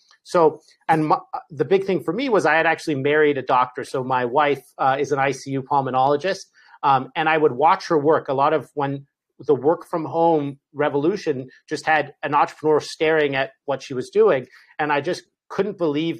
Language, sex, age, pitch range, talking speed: English, male, 40-59, 140-165 Hz, 195 wpm